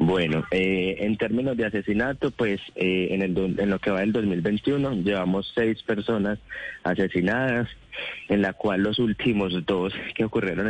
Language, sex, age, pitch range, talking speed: Spanish, male, 20-39, 90-105 Hz, 150 wpm